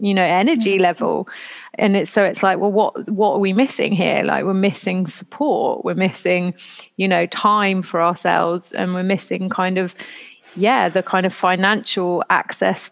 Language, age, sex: English, 30-49, female